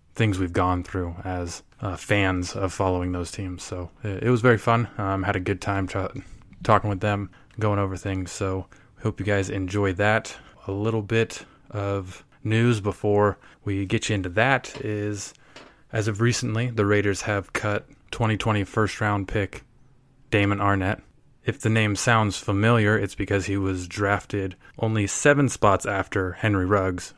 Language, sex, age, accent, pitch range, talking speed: English, male, 20-39, American, 95-110 Hz, 165 wpm